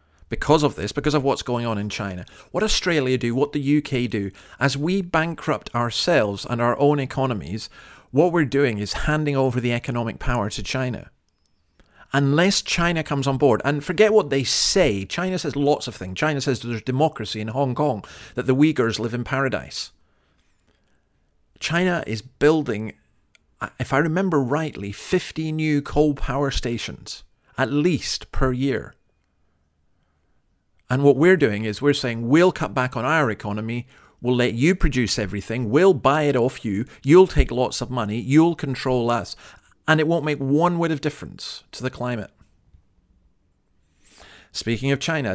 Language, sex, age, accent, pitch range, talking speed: English, male, 40-59, British, 105-145 Hz, 165 wpm